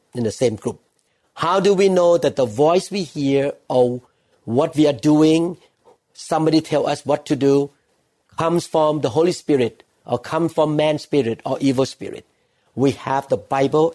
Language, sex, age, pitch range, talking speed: English, male, 50-69, 135-170 Hz, 175 wpm